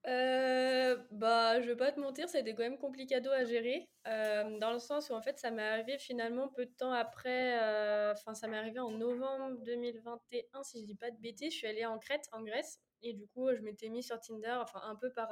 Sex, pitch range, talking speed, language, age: female, 210-255 Hz, 245 wpm, French, 20-39